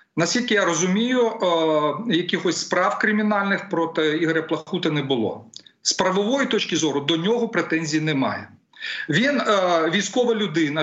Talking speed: 120 wpm